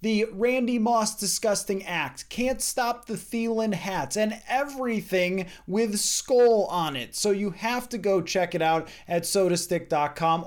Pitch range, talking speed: 155-215 Hz, 150 wpm